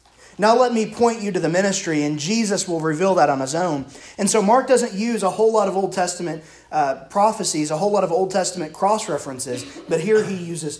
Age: 30-49